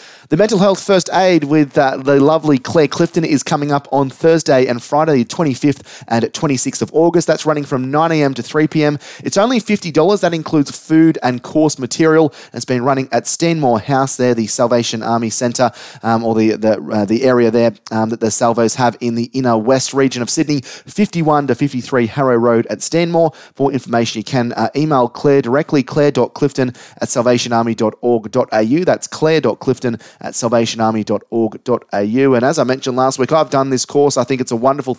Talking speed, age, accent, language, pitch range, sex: 185 wpm, 30-49, Australian, English, 120-145 Hz, male